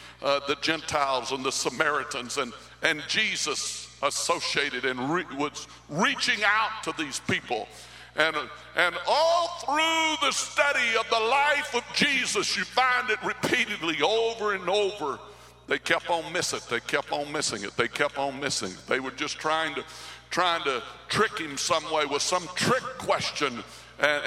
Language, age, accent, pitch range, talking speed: English, 60-79, American, 140-210 Hz, 165 wpm